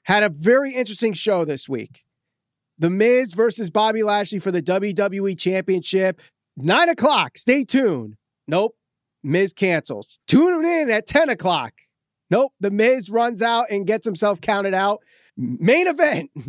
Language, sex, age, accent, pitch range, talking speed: English, male, 30-49, American, 190-245 Hz, 145 wpm